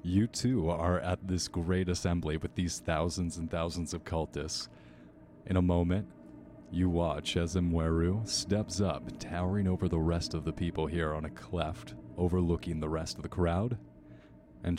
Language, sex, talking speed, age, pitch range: English, male, 165 wpm, 30-49, 80-90 Hz